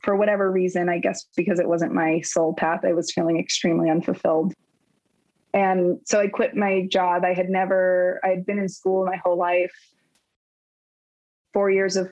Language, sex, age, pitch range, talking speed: English, female, 20-39, 175-205 Hz, 175 wpm